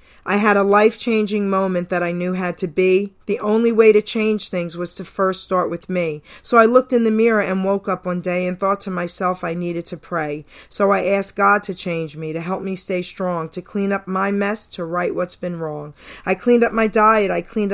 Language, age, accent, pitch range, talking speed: English, 40-59, American, 180-215 Hz, 240 wpm